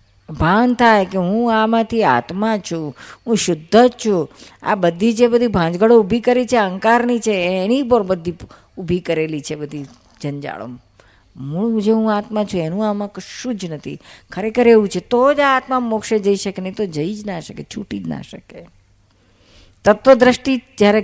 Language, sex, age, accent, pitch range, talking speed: Gujarati, female, 50-69, native, 140-210 Hz, 145 wpm